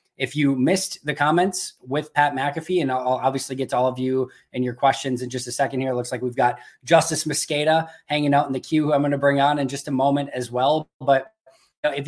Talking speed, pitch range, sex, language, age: 260 wpm, 130-160 Hz, male, English, 20-39